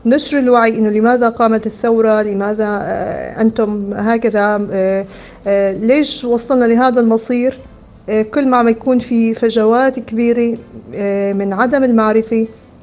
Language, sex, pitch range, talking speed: Arabic, female, 210-240 Hz, 110 wpm